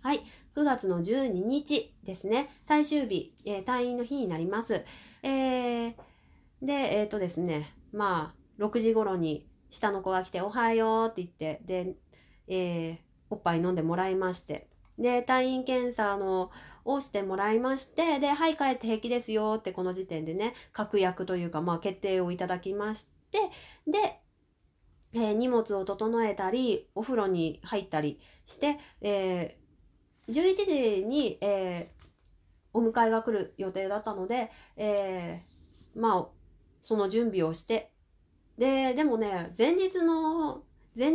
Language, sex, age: Japanese, female, 20-39